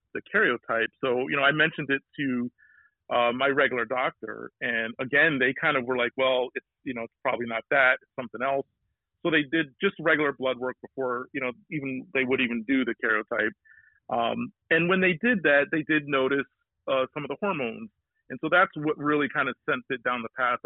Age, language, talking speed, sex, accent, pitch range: 40-59, English, 215 wpm, male, American, 120-145 Hz